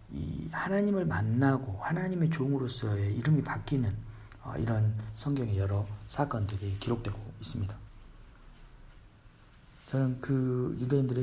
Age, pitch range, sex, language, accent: 40-59, 105-140 Hz, male, Korean, native